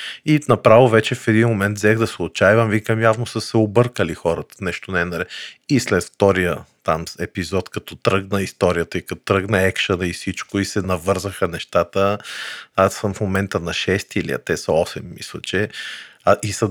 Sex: male